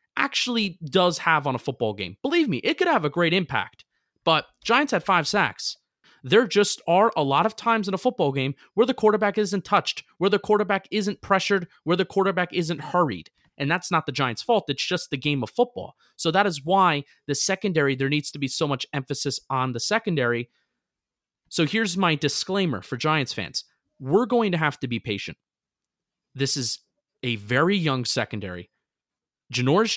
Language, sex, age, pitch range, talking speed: English, male, 30-49, 135-190 Hz, 190 wpm